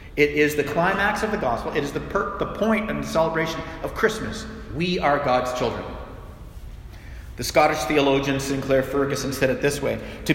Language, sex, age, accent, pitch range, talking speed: English, male, 40-59, American, 140-185 Hz, 185 wpm